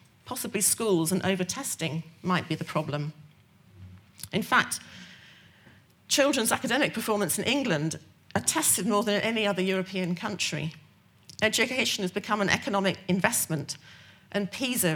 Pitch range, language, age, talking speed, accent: 165-210 Hz, English, 40-59, 125 wpm, British